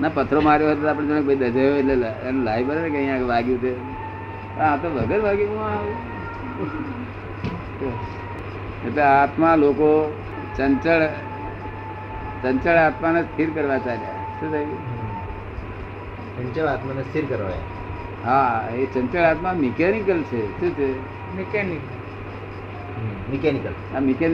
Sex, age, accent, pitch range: male, 50-69, native, 100-160 Hz